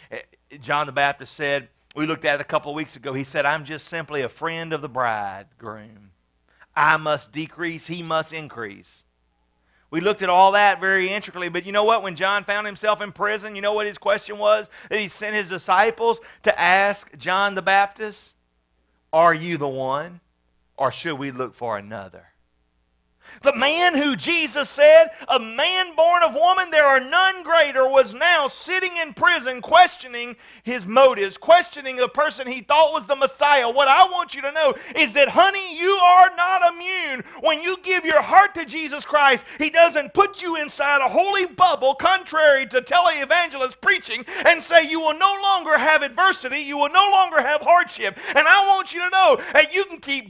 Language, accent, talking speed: English, American, 190 wpm